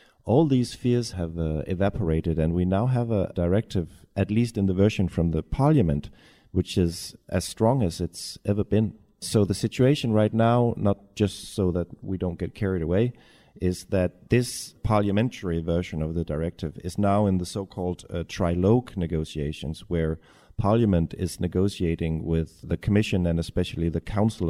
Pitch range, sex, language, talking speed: 85-105 Hz, male, Polish, 165 wpm